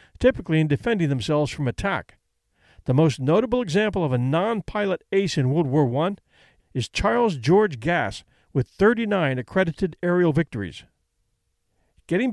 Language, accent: English, American